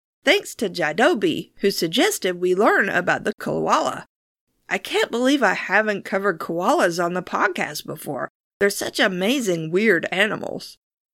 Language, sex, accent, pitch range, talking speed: English, female, American, 180-240 Hz, 140 wpm